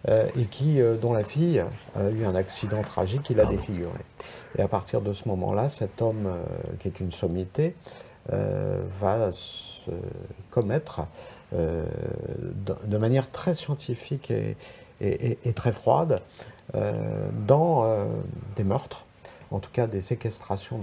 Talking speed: 155 wpm